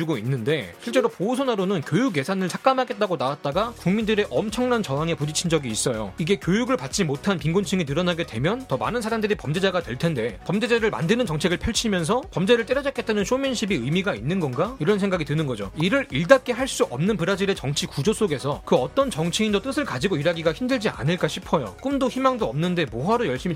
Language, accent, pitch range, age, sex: Korean, native, 160-225 Hz, 30-49, male